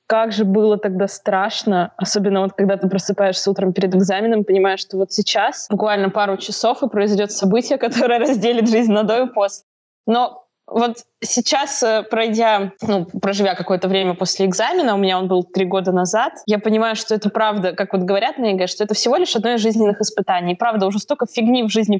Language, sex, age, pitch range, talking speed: Russian, female, 20-39, 195-225 Hz, 195 wpm